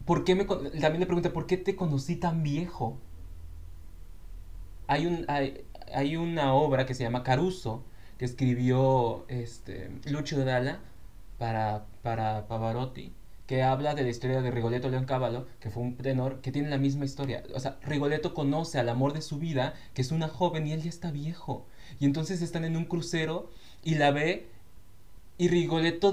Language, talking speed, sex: Spanish, 180 wpm, male